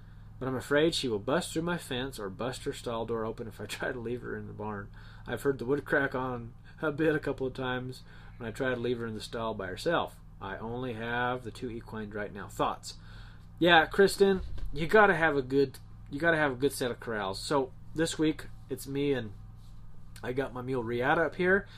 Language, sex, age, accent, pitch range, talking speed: English, male, 30-49, American, 110-140 Hz, 235 wpm